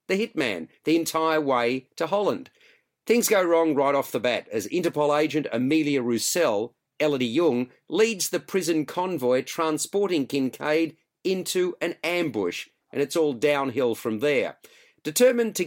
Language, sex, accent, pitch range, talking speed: English, male, Australian, 145-180 Hz, 145 wpm